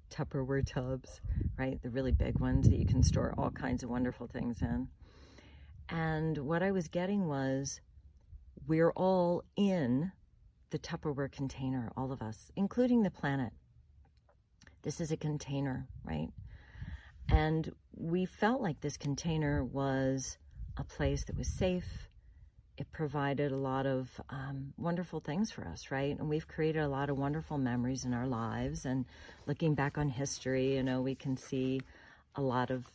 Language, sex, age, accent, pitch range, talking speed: English, female, 40-59, American, 115-155 Hz, 160 wpm